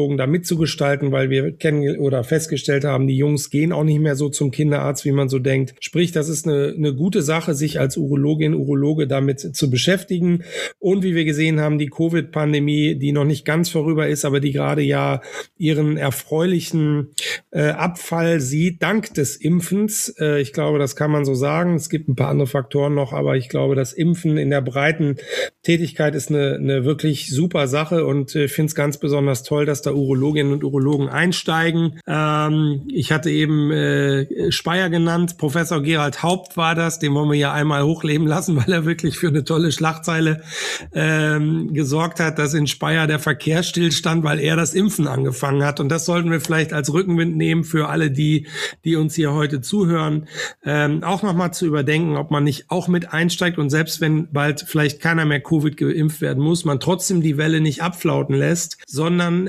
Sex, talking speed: male, 195 wpm